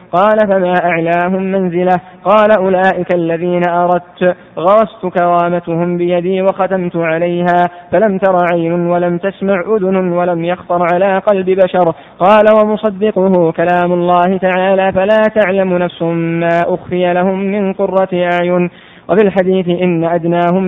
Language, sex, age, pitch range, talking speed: Arabic, male, 20-39, 175-190 Hz, 120 wpm